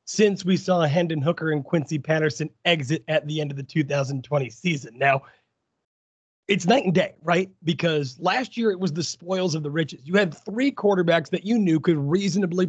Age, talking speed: 30-49, 195 wpm